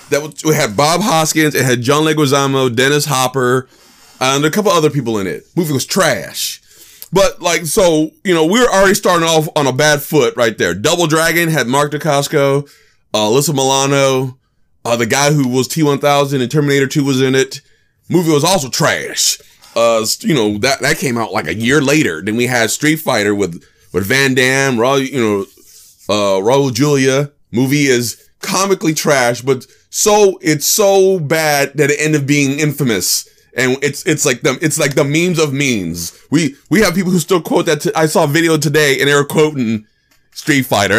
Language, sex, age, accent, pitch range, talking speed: English, male, 30-49, American, 135-160 Hz, 195 wpm